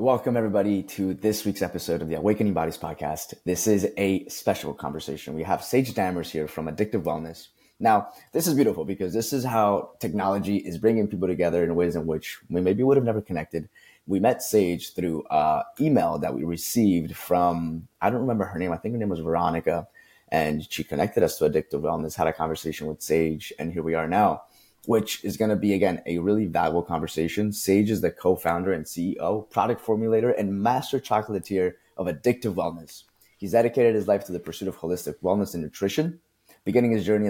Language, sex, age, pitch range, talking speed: English, male, 20-39, 85-105 Hz, 200 wpm